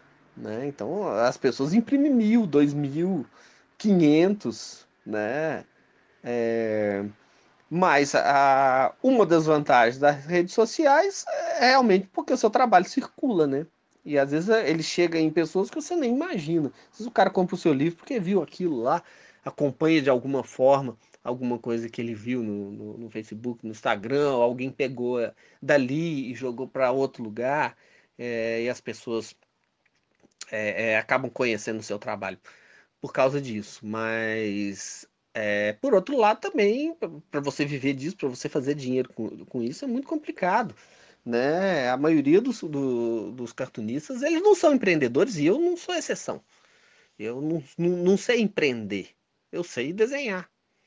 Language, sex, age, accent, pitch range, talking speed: Portuguese, male, 30-49, Brazilian, 120-190 Hz, 150 wpm